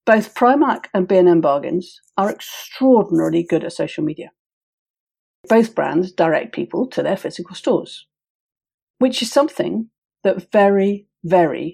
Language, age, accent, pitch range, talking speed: English, 50-69, British, 170-220 Hz, 130 wpm